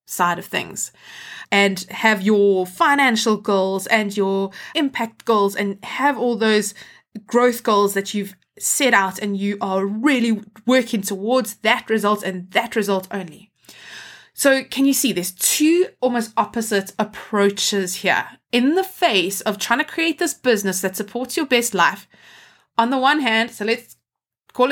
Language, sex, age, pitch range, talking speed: English, female, 20-39, 200-245 Hz, 160 wpm